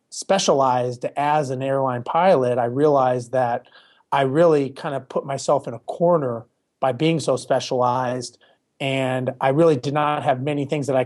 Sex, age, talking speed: male, 30-49, 170 wpm